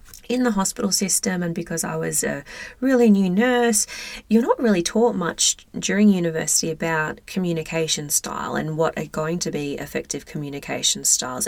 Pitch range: 160-215 Hz